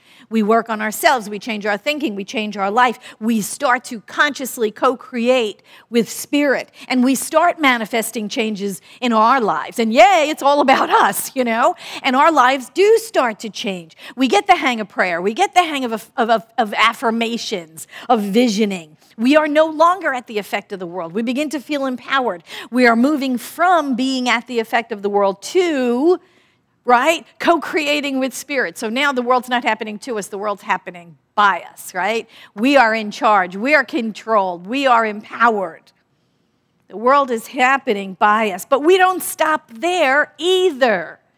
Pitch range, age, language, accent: 215-285 Hz, 50-69, English, American